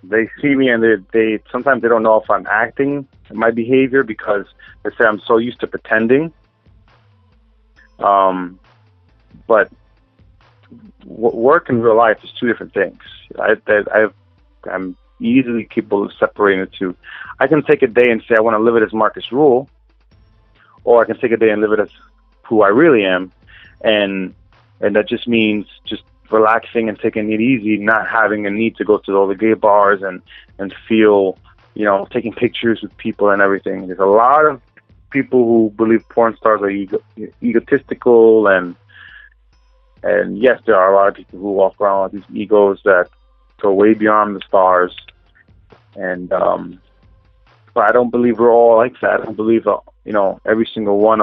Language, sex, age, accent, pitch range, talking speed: English, male, 30-49, American, 100-115 Hz, 180 wpm